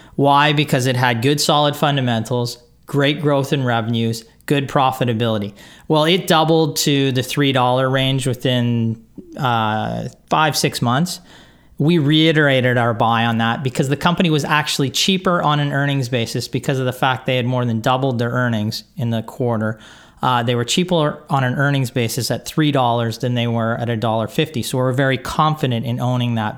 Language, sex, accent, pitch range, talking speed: English, male, American, 125-145 Hz, 175 wpm